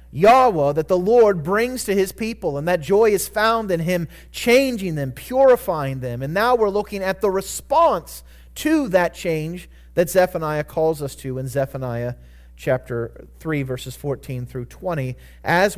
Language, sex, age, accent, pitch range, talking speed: English, male, 30-49, American, 125-200 Hz, 165 wpm